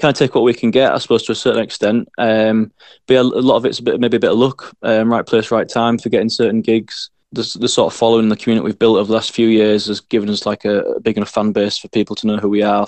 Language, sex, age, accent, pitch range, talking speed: English, male, 20-39, British, 105-115 Hz, 305 wpm